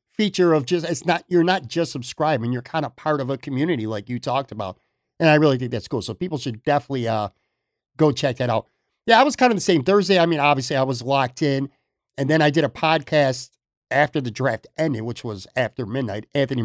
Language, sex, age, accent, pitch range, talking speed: English, male, 50-69, American, 120-165 Hz, 235 wpm